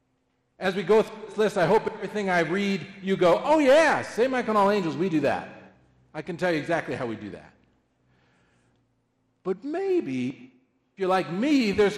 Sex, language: male, English